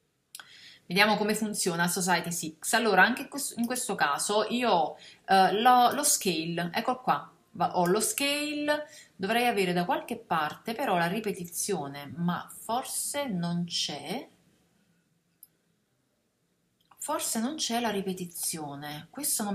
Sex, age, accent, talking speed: female, 30-49, native, 120 wpm